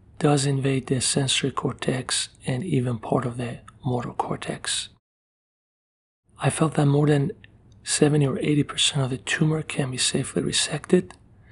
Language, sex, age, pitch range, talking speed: Italian, male, 40-59, 115-145 Hz, 140 wpm